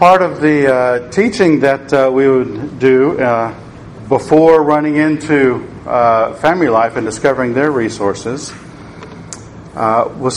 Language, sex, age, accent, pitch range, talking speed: English, male, 50-69, American, 125-160 Hz, 135 wpm